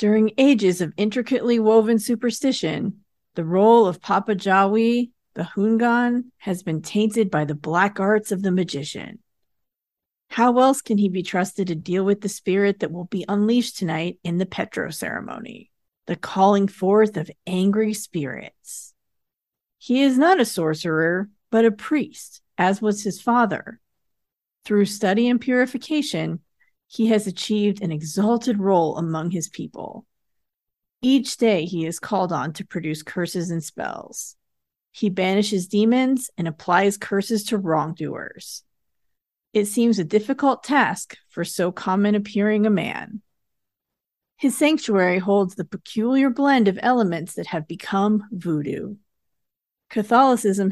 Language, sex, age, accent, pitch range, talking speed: English, female, 40-59, American, 180-230 Hz, 140 wpm